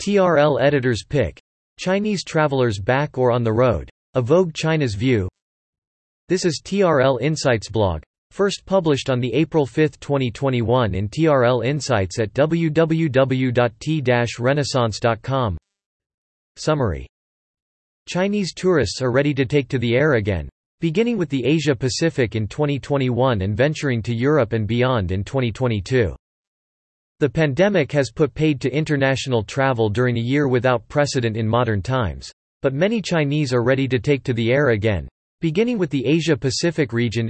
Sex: male